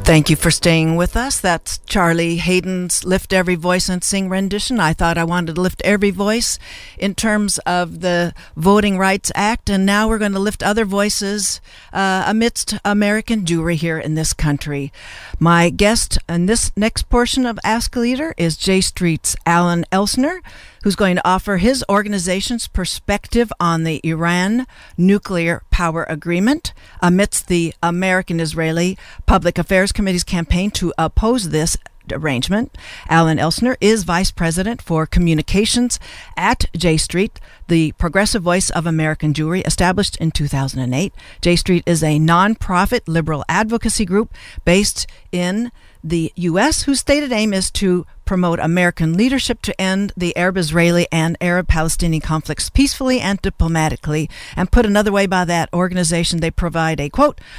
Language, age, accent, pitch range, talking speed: English, 60-79, American, 165-205 Hz, 150 wpm